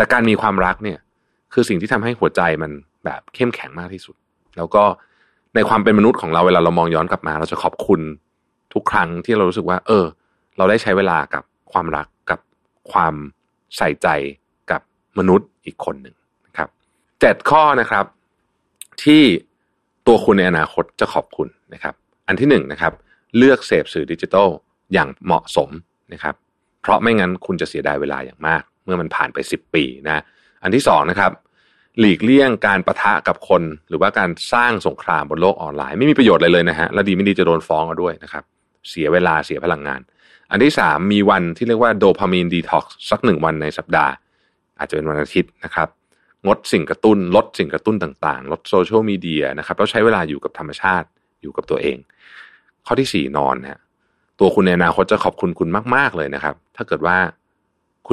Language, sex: Thai, male